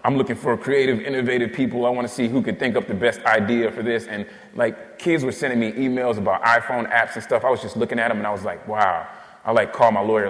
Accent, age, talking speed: American, 30-49, 275 wpm